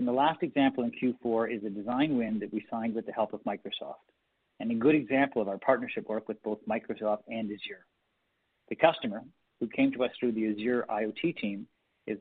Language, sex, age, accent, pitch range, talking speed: English, male, 50-69, American, 110-130 Hz, 205 wpm